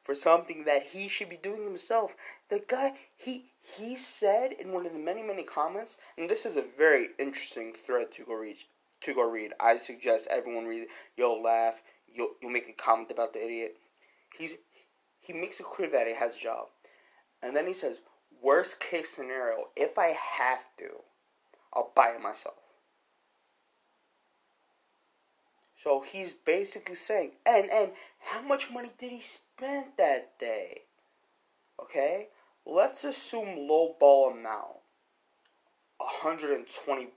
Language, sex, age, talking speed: English, male, 20-39, 155 wpm